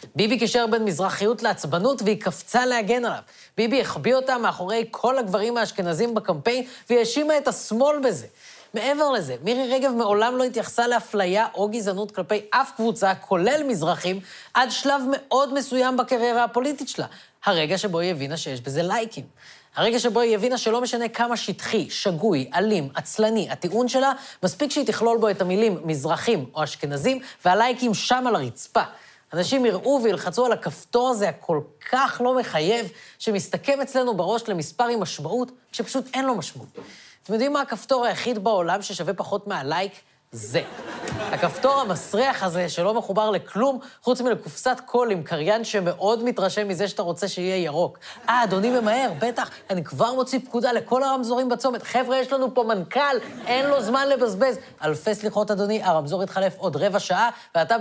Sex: female